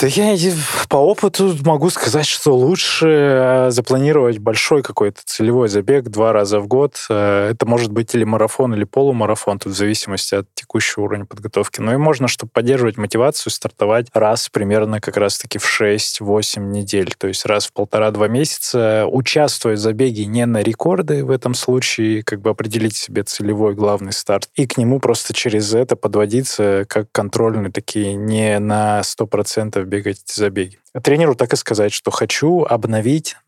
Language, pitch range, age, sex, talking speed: Russian, 105-125 Hz, 20-39, male, 165 wpm